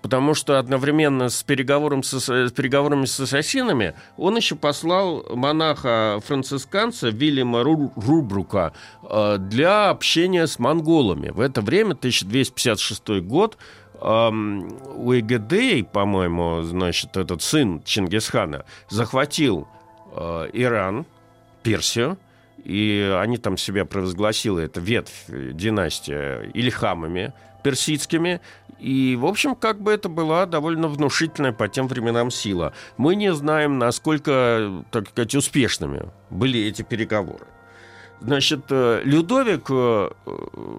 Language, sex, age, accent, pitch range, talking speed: Russian, male, 50-69, native, 105-150 Hz, 100 wpm